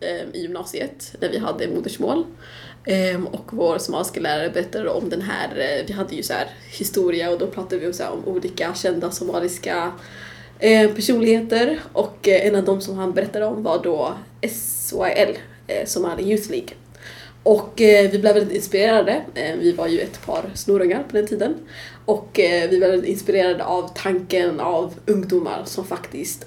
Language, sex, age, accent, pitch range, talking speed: Swedish, female, 20-39, native, 185-220 Hz, 150 wpm